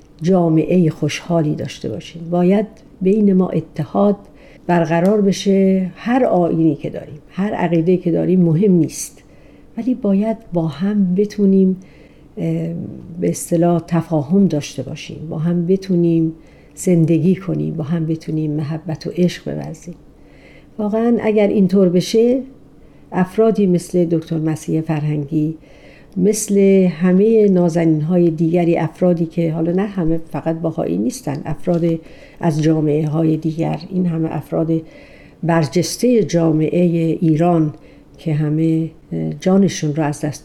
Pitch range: 160-190 Hz